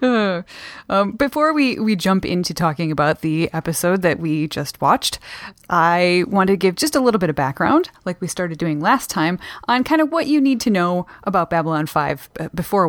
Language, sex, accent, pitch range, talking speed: English, female, American, 160-230 Hz, 200 wpm